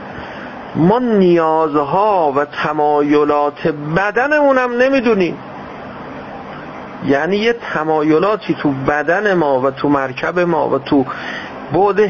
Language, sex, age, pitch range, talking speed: Persian, male, 50-69, 140-190 Hz, 105 wpm